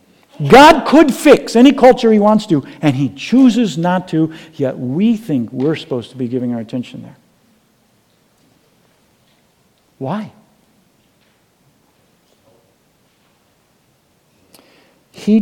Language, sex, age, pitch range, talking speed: English, male, 60-79, 125-185 Hz, 100 wpm